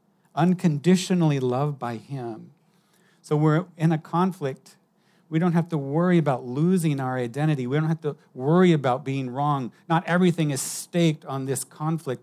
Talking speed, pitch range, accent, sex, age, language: 160 wpm, 135-180 Hz, American, male, 50-69, English